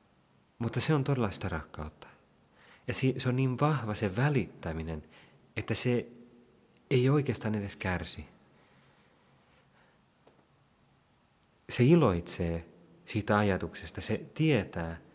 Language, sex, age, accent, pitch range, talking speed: Finnish, male, 30-49, native, 85-115 Hz, 95 wpm